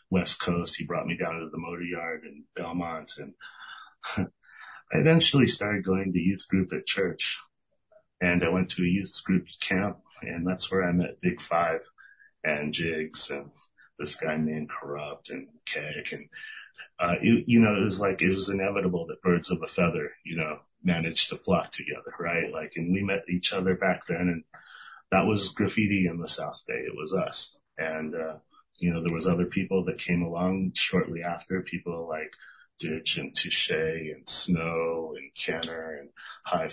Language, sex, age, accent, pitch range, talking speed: English, male, 30-49, American, 85-95 Hz, 185 wpm